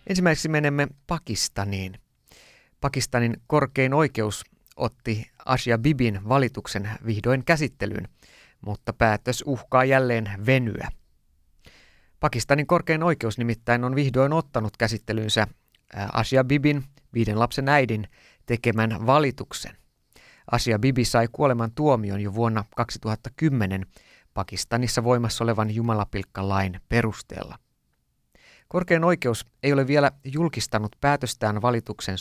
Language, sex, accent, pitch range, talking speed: Finnish, male, native, 105-130 Hz, 100 wpm